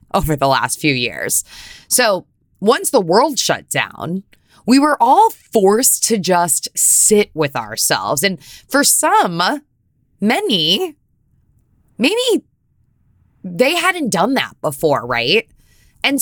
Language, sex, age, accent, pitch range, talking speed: English, female, 20-39, American, 150-225 Hz, 120 wpm